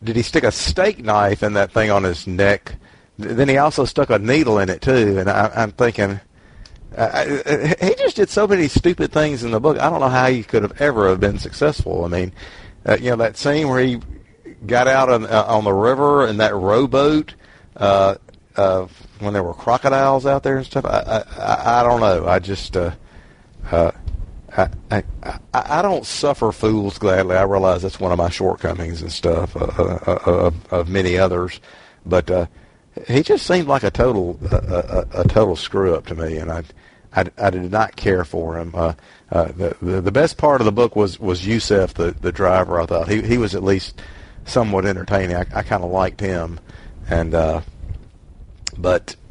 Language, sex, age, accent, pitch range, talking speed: English, male, 50-69, American, 90-120 Hz, 200 wpm